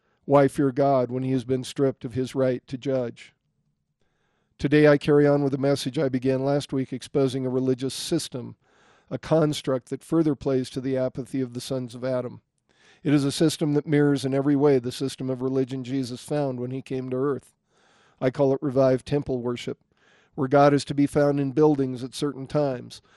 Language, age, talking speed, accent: English, 50-69, 200 wpm, American